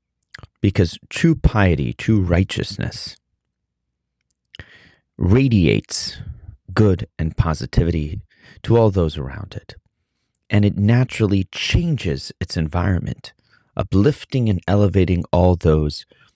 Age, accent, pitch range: 30-49, American, 80-105 Hz